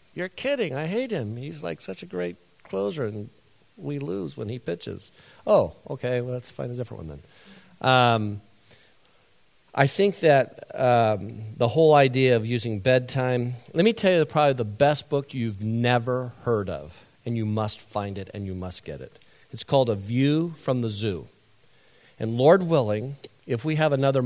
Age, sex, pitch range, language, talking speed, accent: 50-69, male, 105-130 Hz, English, 180 wpm, American